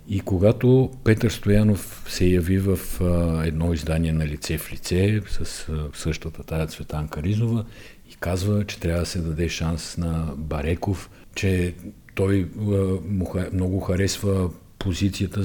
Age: 50-69